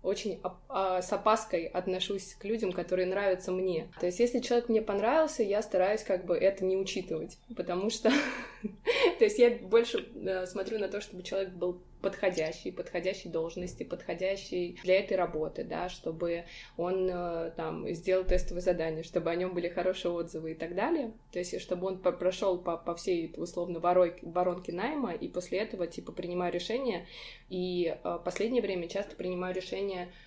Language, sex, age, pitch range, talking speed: Russian, female, 20-39, 175-205 Hz, 165 wpm